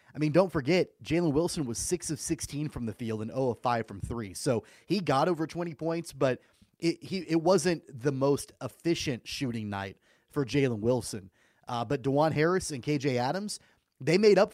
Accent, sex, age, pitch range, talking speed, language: American, male, 30-49, 120-155 Hz, 200 wpm, English